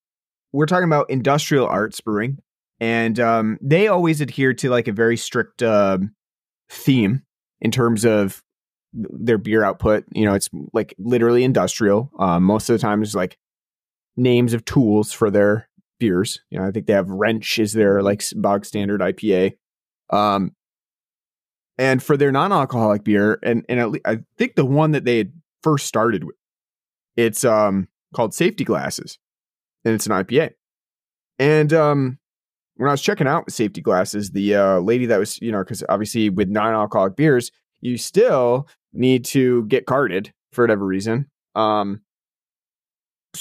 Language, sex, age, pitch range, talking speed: English, male, 30-49, 105-145 Hz, 165 wpm